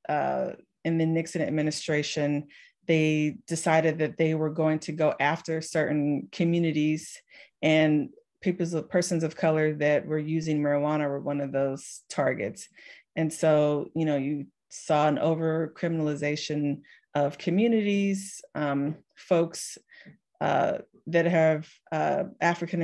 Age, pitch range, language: 30-49, 155-175 Hz, English